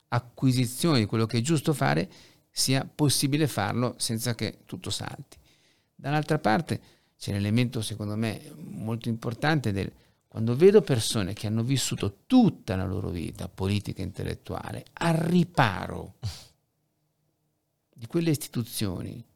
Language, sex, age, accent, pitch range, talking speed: Italian, male, 50-69, native, 105-150 Hz, 130 wpm